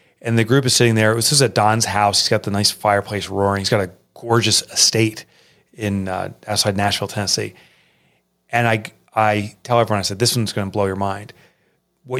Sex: male